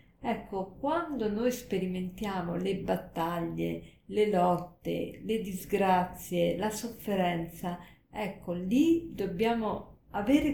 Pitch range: 180-225 Hz